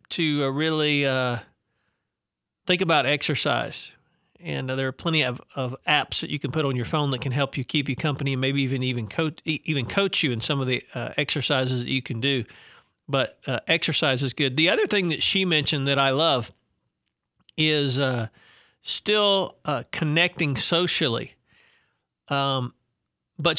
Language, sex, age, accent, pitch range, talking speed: English, male, 40-59, American, 130-160 Hz, 175 wpm